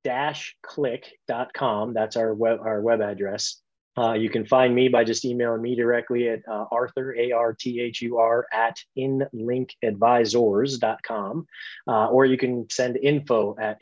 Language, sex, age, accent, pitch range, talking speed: English, male, 30-49, American, 115-135 Hz, 135 wpm